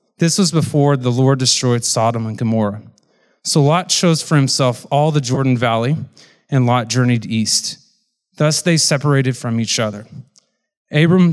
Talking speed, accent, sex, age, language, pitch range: 155 wpm, American, male, 30-49, English, 120-155 Hz